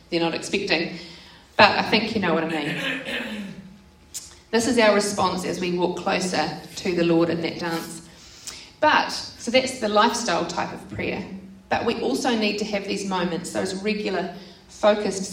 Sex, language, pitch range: female, English, 170-210 Hz